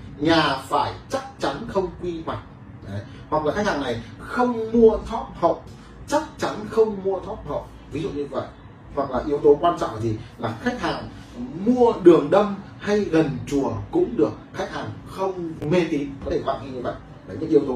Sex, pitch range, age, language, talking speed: male, 135-210 Hz, 20-39, Vietnamese, 205 wpm